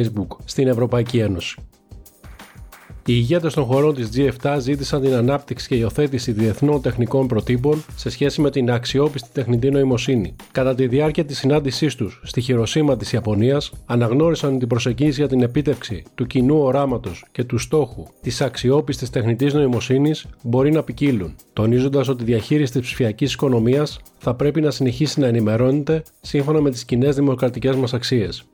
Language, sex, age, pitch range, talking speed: Greek, male, 40-59, 120-145 Hz, 155 wpm